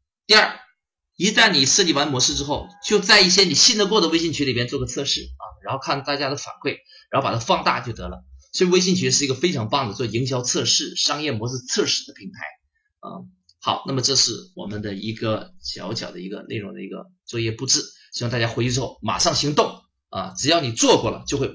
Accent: native